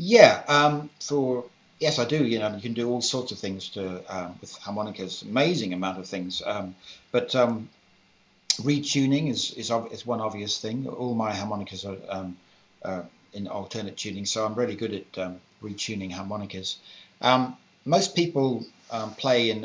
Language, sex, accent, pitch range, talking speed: English, male, British, 100-120 Hz, 175 wpm